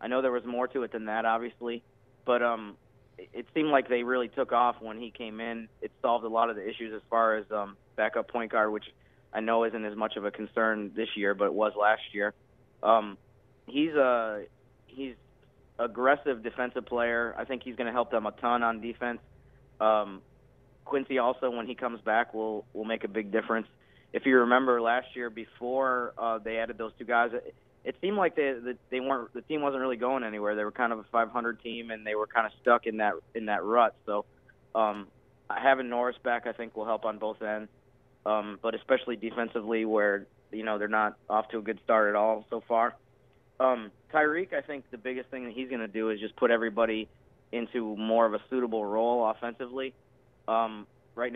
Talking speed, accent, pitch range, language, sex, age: 215 wpm, American, 110-125 Hz, English, male, 30-49